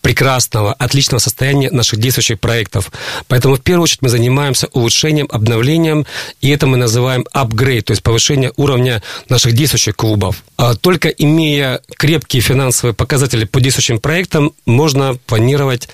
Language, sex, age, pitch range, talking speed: Russian, male, 40-59, 120-150 Hz, 135 wpm